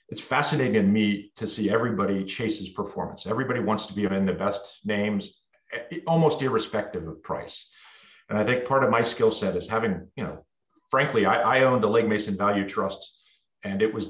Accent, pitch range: American, 100-125 Hz